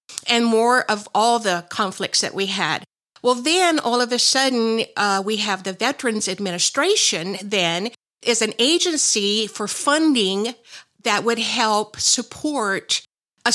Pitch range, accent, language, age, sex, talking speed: 195-240 Hz, American, English, 50-69, female, 140 wpm